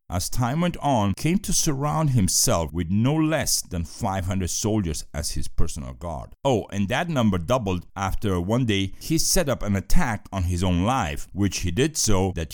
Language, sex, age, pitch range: Chinese, male, 50-69, 90-130 Hz